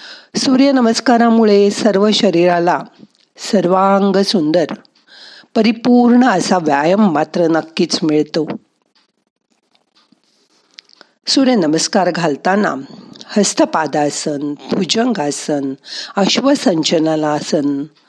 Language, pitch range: Marathi, 160-240 Hz